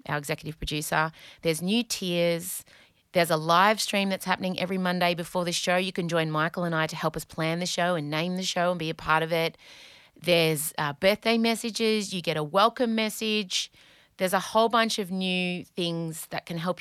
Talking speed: 205 wpm